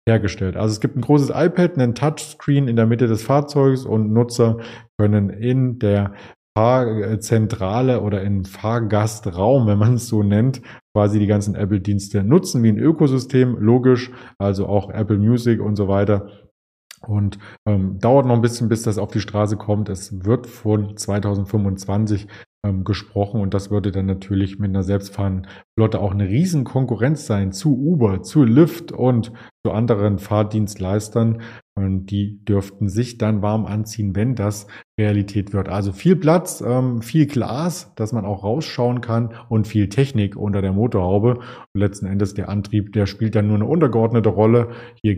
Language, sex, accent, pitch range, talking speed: German, male, German, 100-120 Hz, 165 wpm